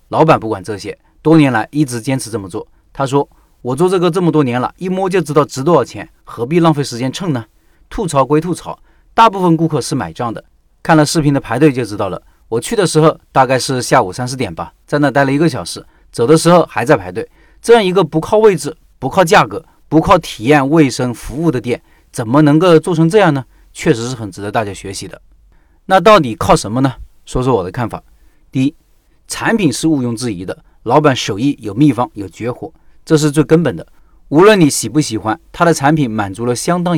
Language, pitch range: Chinese, 120-165 Hz